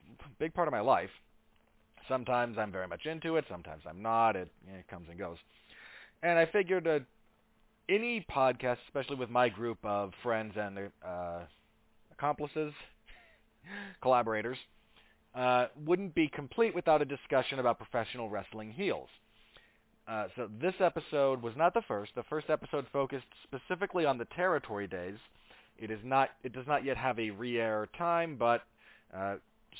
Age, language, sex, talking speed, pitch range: 30-49, English, male, 155 wpm, 110-140 Hz